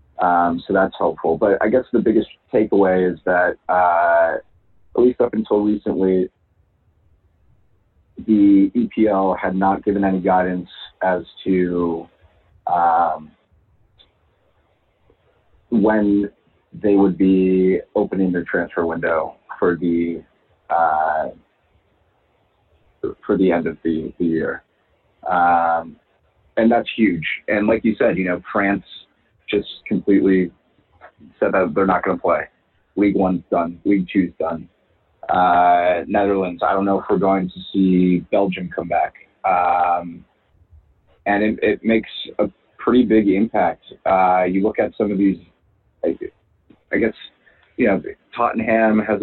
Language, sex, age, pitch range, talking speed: English, male, 30-49, 90-100 Hz, 130 wpm